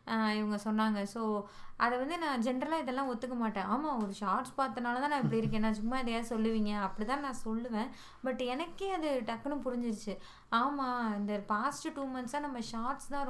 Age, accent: 20-39, native